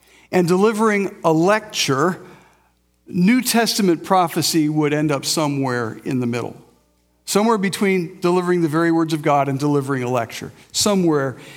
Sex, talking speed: male, 140 wpm